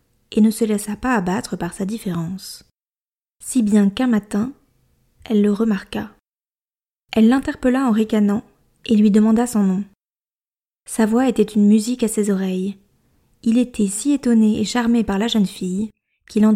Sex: female